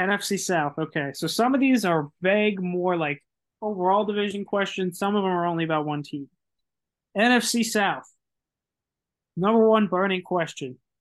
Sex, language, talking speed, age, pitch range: male, English, 155 wpm, 20-39, 160-195 Hz